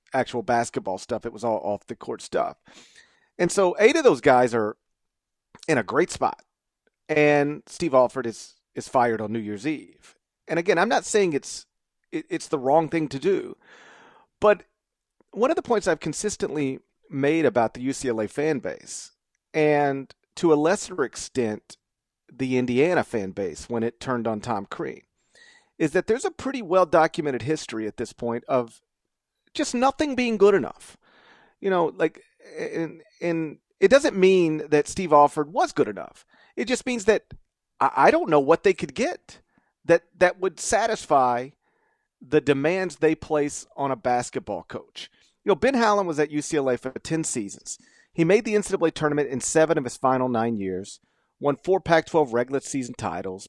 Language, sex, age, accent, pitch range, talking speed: English, male, 40-59, American, 125-190 Hz, 175 wpm